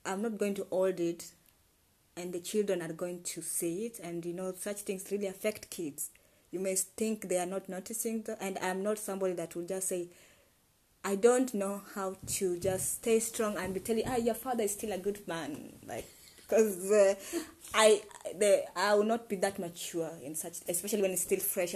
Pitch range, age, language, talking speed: 170-200 Hz, 20-39, English, 205 wpm